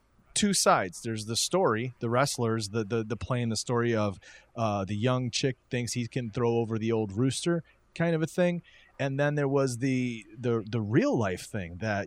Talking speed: 210 wpm